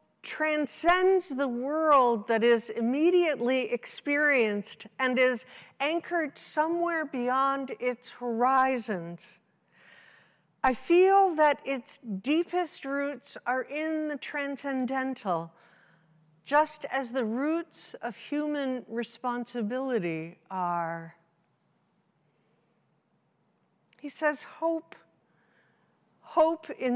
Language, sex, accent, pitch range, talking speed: English, female, American, 230-290 Hz, 80 wpm